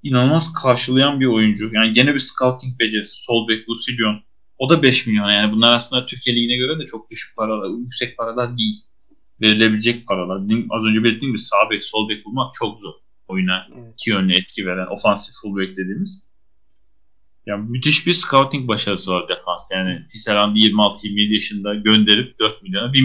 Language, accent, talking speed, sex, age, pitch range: Turkish, native, 165 wpm, male, 30-49, 105-130 Hz